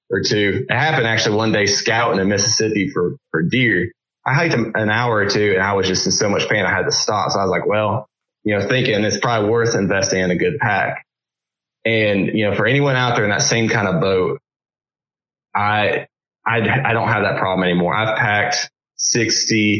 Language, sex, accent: English, male, American